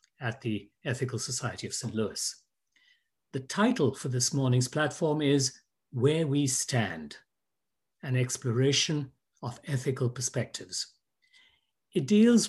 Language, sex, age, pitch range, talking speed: English, male, 60-79, 120-150 Hz, 115 wpm